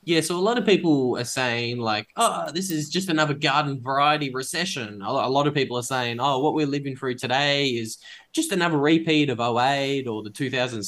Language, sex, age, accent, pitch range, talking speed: English, male, 10-29, Australian, 105-130 Hz, 210 wpm